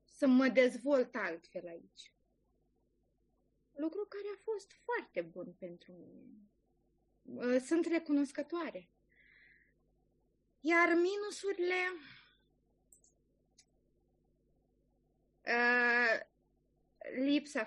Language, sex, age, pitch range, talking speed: Romanian, female, 20-39, 200-300 Hz, 60 wpm